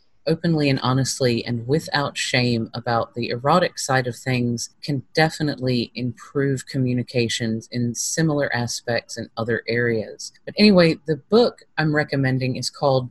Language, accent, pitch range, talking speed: English, American, 120-150 Hz, 135 wpm